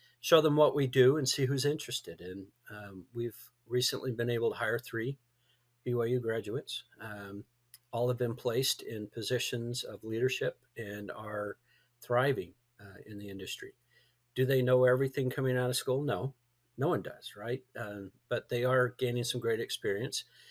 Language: English